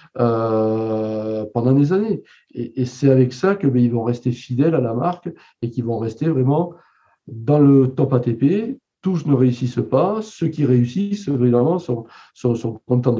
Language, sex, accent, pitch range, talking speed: French, male, French, 115-150 Hz, 170 wpm